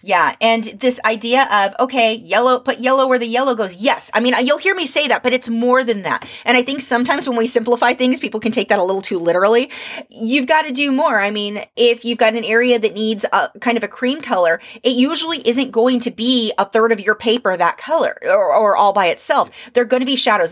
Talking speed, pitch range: 250 wpm, 210-255 Hz